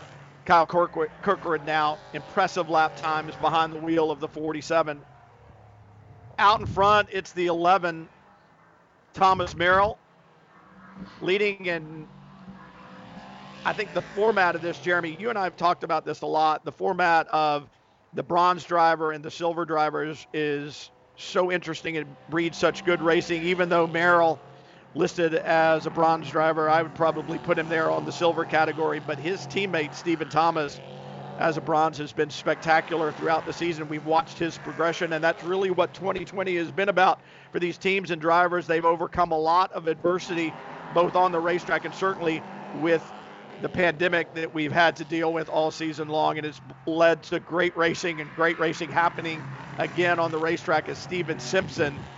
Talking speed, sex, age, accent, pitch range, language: 170 wpm, male, 50-69, American, 155-175 Hz, English